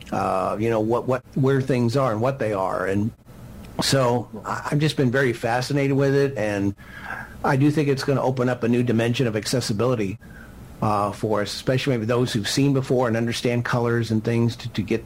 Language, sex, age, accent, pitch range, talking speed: English, male, 50-69, American, 115-135 Hz, 205 wpm